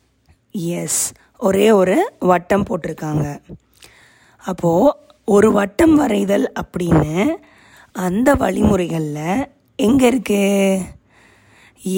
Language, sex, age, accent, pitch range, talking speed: Tamil, female, 20-39, native, 175-225 Hz, 70 wpm